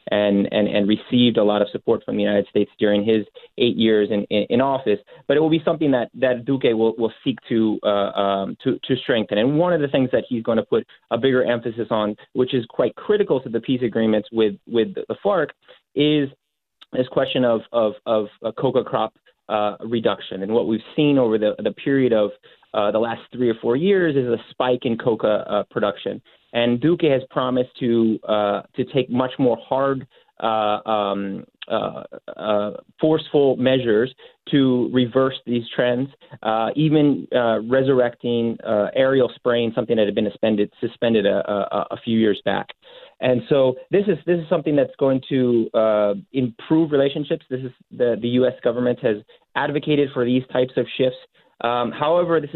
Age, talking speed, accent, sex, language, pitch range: 30-49, 190 wpm, American, male, English, 110-140 Hz